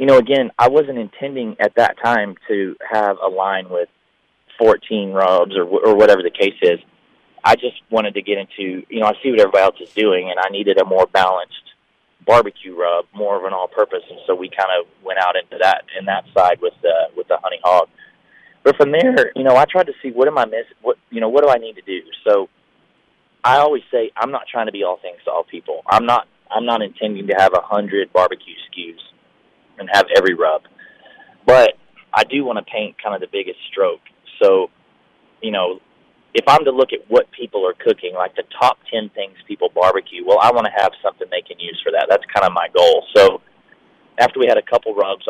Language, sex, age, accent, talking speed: English, male, 30-49, American, 230 wpm